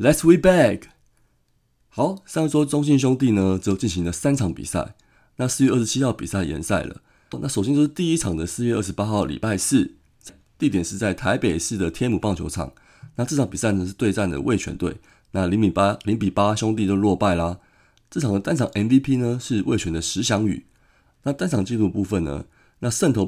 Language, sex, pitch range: Chinese, male, 95-125 Hz